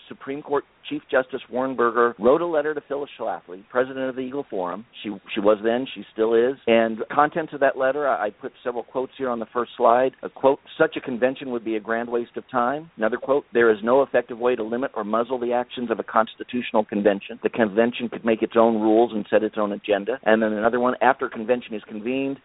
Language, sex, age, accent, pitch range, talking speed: English, male, 50-69, American, 110-135 Hz, 240 wpm